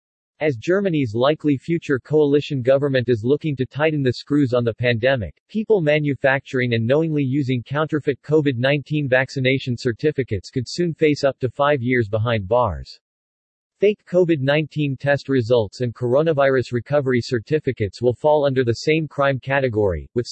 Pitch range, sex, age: 120-150 Hz, male, 40-59